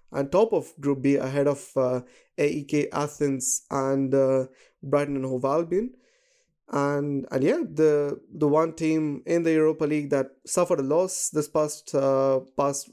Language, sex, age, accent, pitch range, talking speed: English, male, 20-39, Indian, 140-160 Hz, 165 wpm